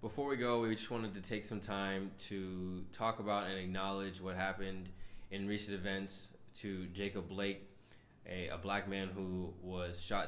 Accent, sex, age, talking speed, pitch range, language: American, male, 20-39, 175 wpm, 90-100 Hz, English